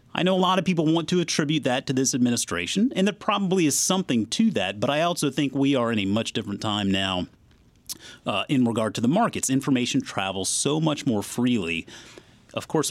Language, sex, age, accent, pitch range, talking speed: English, male, 30-49, American, 100-145 Hz, 210 wpm